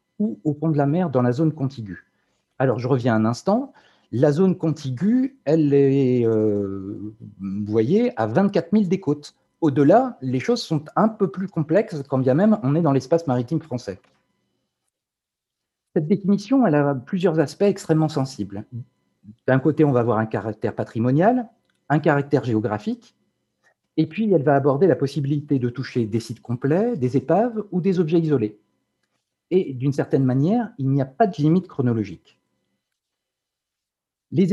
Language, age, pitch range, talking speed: French, 50-69, 120-170 Hz, 165 wpm